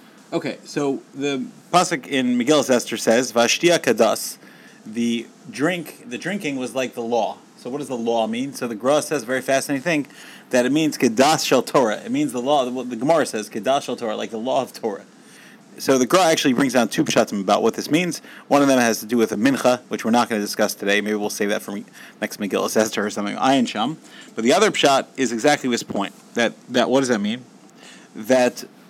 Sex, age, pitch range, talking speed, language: male, 30-49, 120-175 Hz, 220 wpm, English